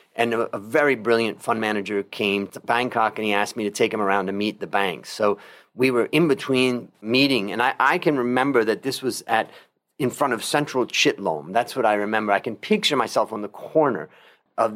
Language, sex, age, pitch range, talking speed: English, male, 40-59, 105-130 Hz, 215 wpm